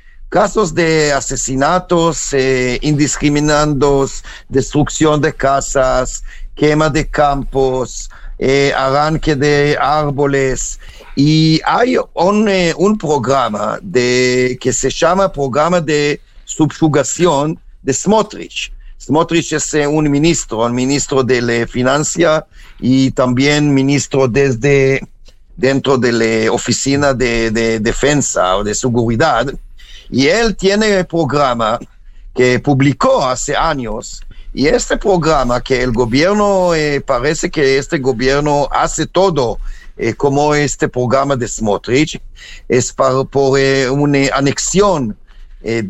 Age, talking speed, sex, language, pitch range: 50-69, 115 wpm, male, Spanish, 130-160 Hz